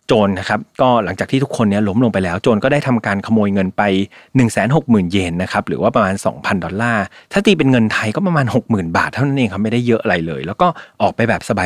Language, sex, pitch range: Thai, male, 105-145 Hz